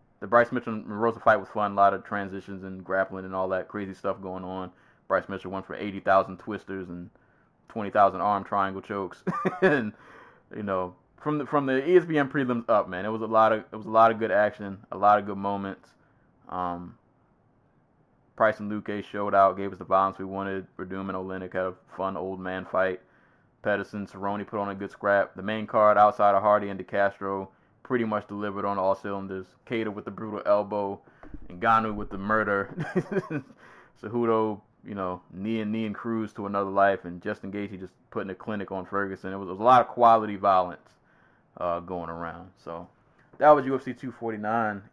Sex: male